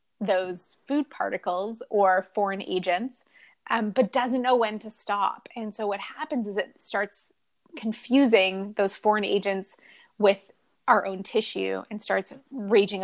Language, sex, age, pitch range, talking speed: English, female, 20-39, 195-240 Hz, 145 wpm